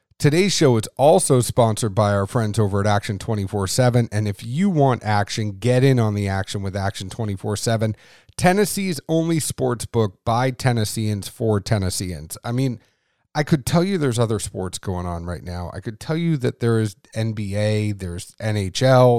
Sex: male